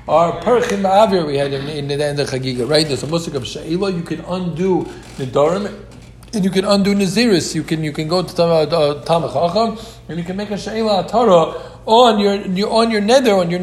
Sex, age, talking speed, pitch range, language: male, 50-69, 230 wpm, 145-200 Hz, English